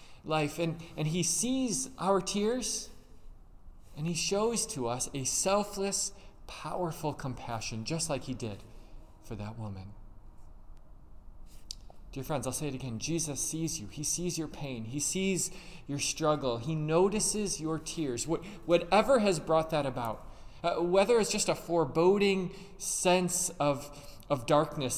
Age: 20-39